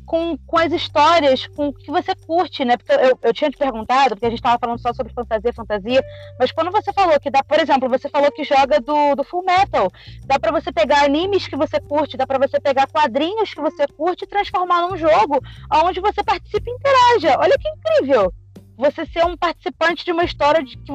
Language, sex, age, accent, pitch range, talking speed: Portuguese, female, 20-39, Brazilian, 225-310 Hz, 220 wpm